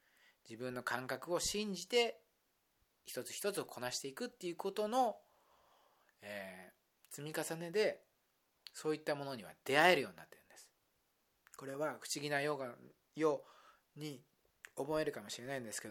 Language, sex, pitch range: Japanese, male, 125-180 Hz